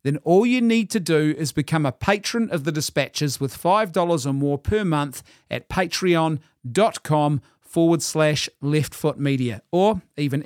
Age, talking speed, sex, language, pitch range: 40-59, 150 wpm, male, English, 150-195 Hz